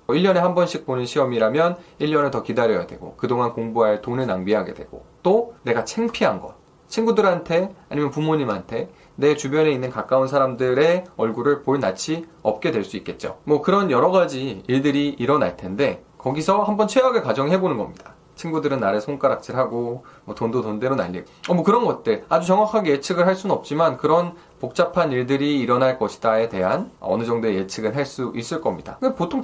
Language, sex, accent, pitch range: Korean, male, native, 125-190 Hz